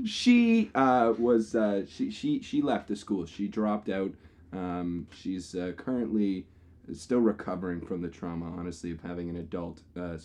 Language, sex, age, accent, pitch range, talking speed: English, male, 20-39, American, 90-125 Hz, 165 wpm